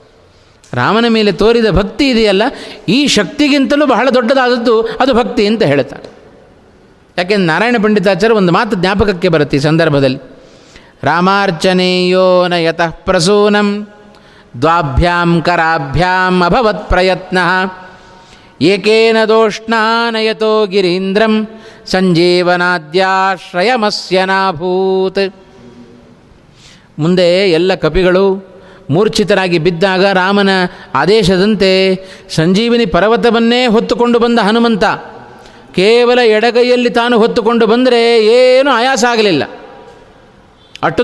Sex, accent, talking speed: male, native, 80 wpm